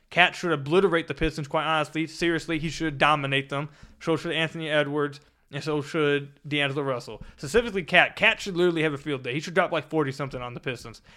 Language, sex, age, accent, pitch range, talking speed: English, male, 20-39, American, 145-185 Hz, 205 wpm